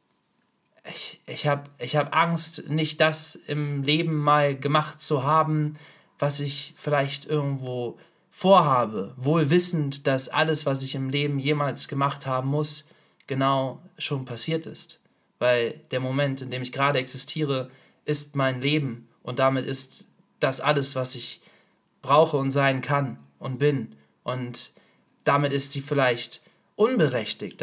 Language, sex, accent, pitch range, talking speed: German, male, German, 130-155 Hz, 140 wpm